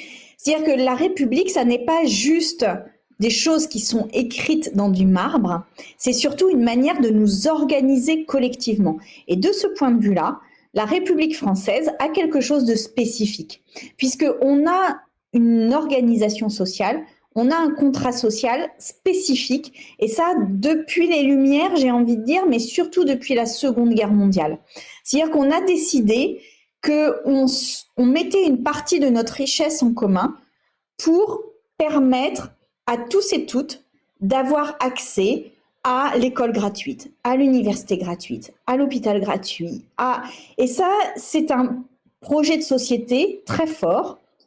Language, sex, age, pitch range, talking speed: French, female, 30-49, 230-310 Hz, 145 wpm